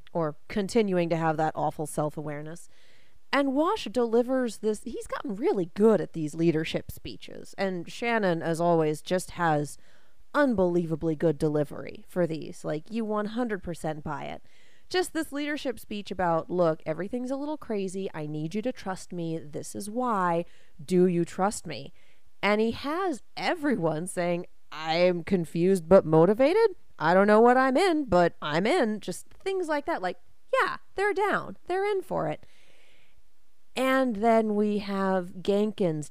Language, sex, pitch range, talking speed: English, female, 165-240 Hz, 155 wpm